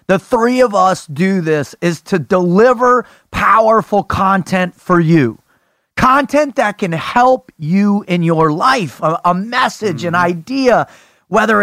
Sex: male